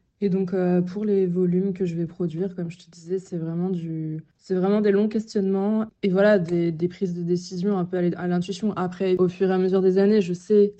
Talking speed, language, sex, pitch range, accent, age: 240 wpm, French, female, 170-195 Hz, French, 20-39